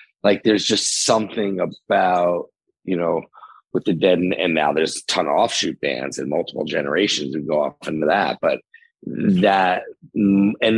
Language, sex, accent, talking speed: English, male, American, 165 wpm